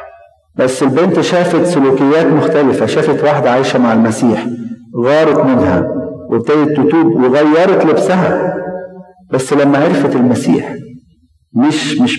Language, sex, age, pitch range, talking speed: Arabic, male, 50-69, 120-150 Hz, 110 wpm